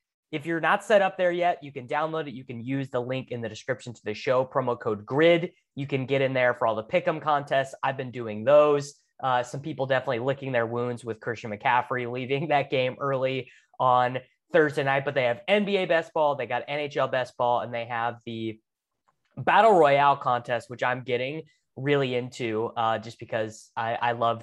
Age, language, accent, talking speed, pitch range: 20-39, English, American, 210 wpm, 120-170 Hz